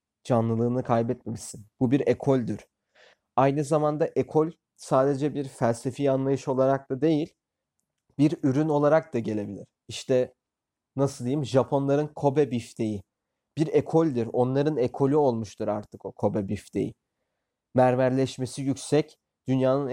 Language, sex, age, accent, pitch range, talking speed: Turkish, male, 30-49, native, 120-145 Hz, 115 wpm